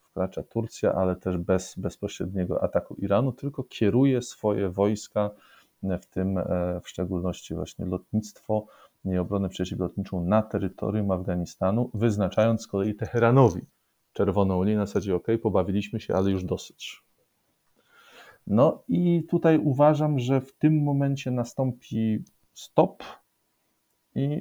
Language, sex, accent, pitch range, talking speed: Polish, male, native, 95-120 Hz, 125 wpm